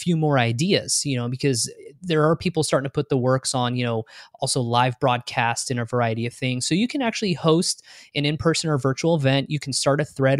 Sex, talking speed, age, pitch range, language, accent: male, 230 wpm, 20-39, 125-150 Hz, English, American